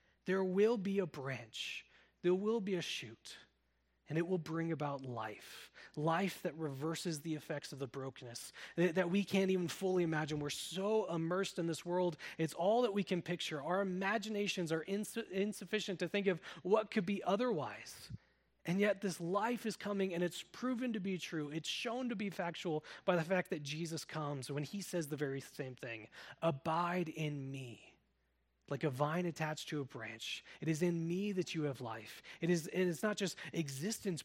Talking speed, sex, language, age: 185 wpm, male, English, 30-49